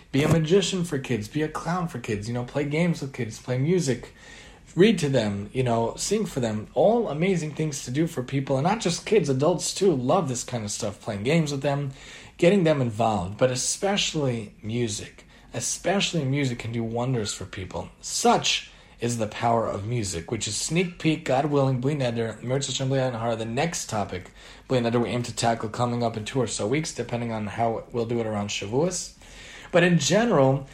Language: English